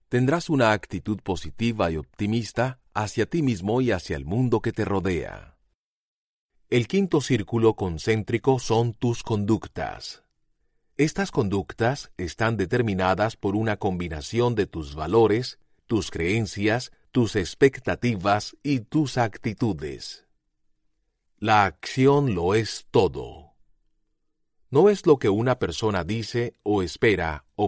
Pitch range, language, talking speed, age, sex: 95-125 Hz, Spanish, 120 wpm, 40-59, male